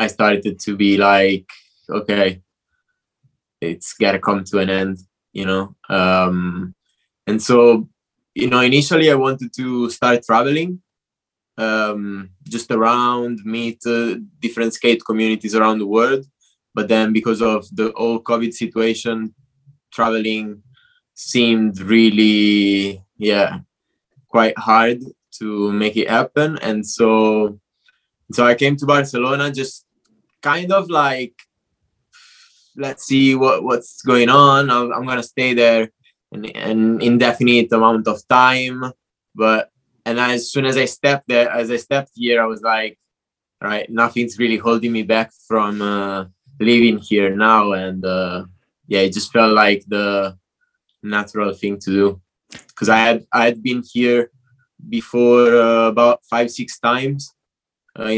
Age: 20-39